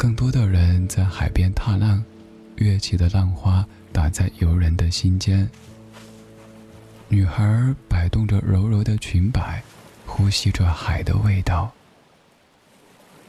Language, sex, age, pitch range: Chinese, male, 20-39, 90-110 Hz